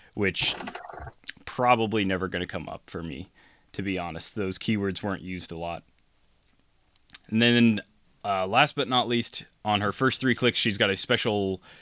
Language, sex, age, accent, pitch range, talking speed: English, male, 20-39, American, 95-110 Hz, 175 wpm